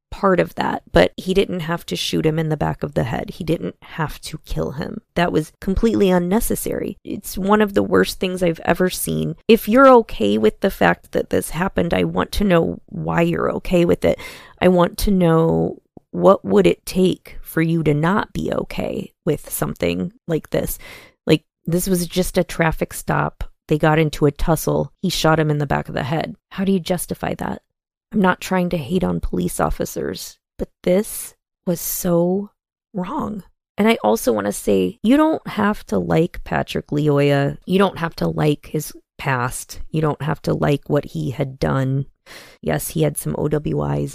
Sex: female